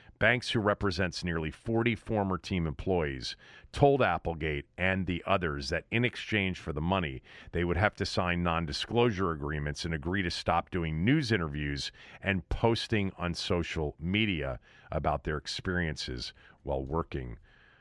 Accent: American